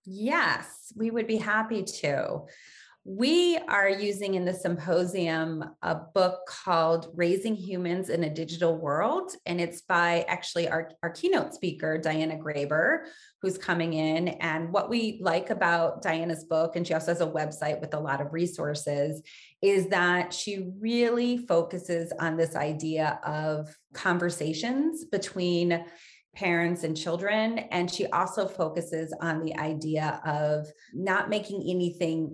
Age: 30-49